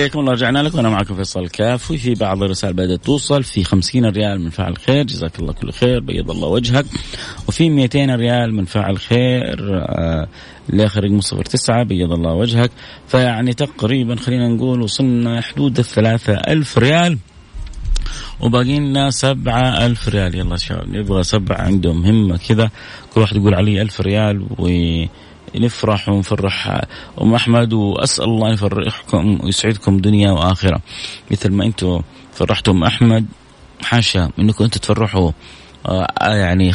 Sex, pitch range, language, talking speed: male, 95-120 Hz, Arabic, 125 wpm